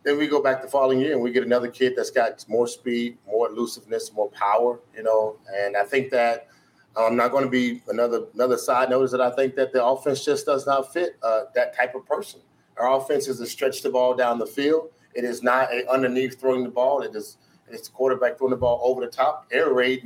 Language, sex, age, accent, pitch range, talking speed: English, male, 30-49, American, 120-140 Hz, 245 wpm